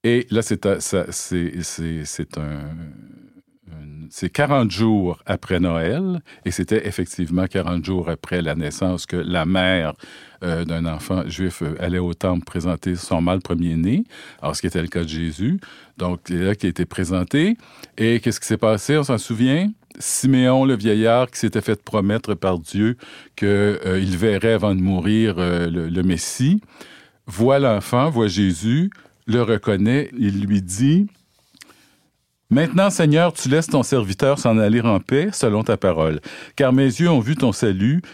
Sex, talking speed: male, 165 wpm